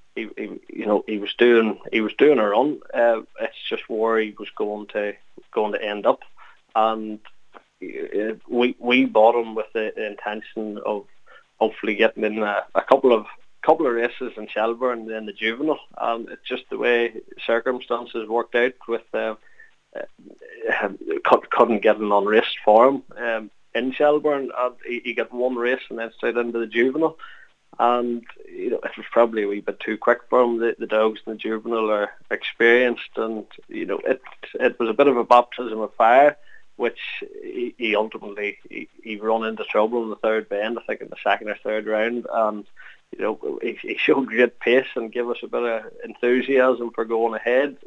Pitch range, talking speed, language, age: 110-125 Hz, 190 wpm, English, 20-39